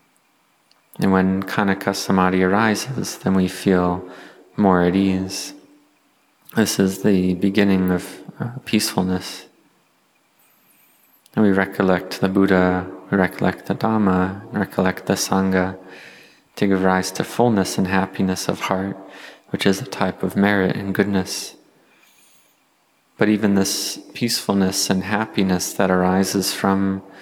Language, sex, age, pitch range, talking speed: English, male, 20-39, 90-100 Hz, 120 wpm